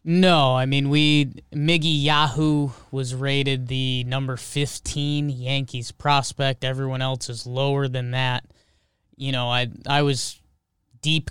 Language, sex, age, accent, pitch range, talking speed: English, male, 20-39, American, 125-150 Hz, 135 wpm